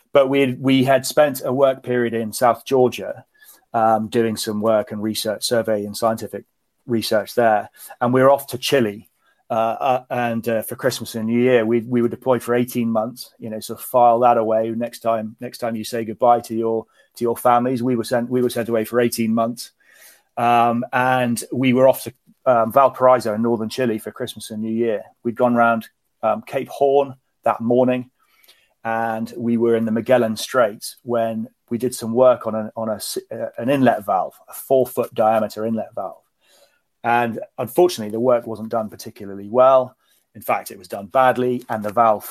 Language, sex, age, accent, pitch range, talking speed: English, male, 30-49, British, 110-125 Hz, 195 wpm